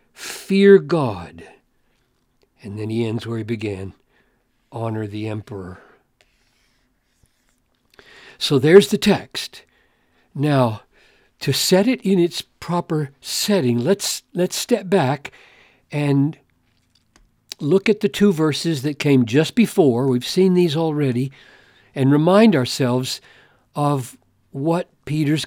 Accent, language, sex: American, English, male